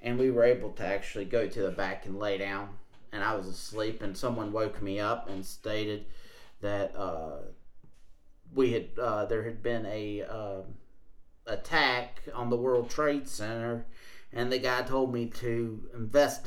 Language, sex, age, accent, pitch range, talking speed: English, male, 30-49, American, 110-130 Hz, 170 wpm